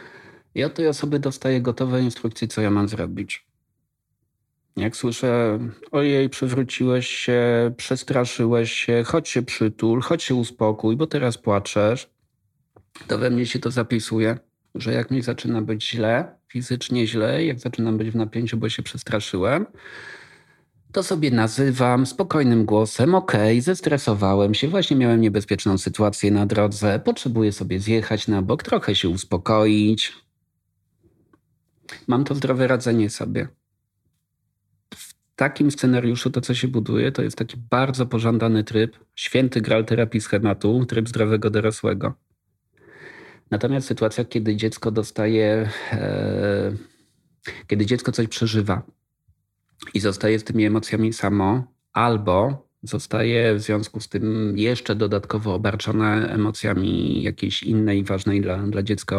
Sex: male